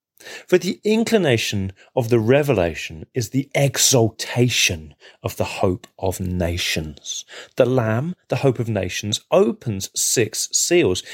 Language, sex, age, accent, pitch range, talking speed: English, male, 30-49, British, 105-170 Hz, 125 wpm